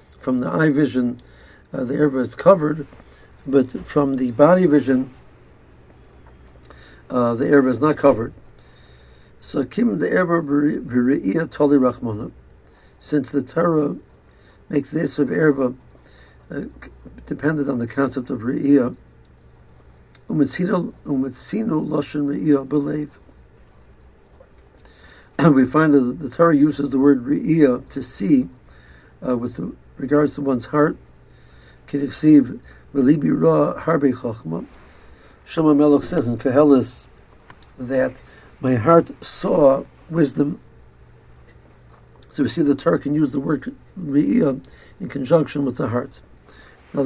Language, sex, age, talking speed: English, male, 60-79, 110 wpm